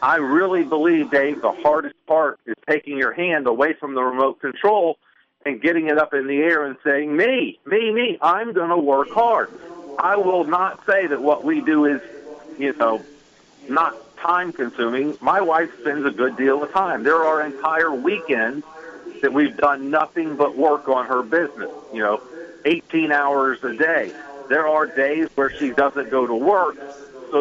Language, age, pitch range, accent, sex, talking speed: English, 50-69, 135-165 Hz, American, male, 180 wpm